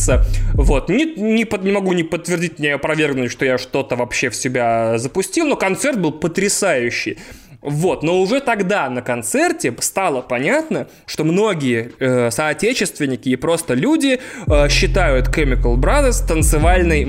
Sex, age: male, 20-39